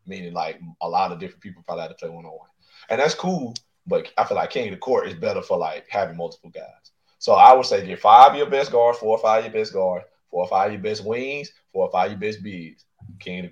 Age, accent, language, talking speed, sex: 30-49, American, English, 295 wpm, male